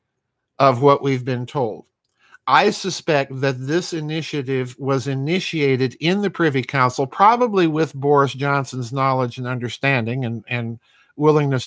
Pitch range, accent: 125-150 Hz, American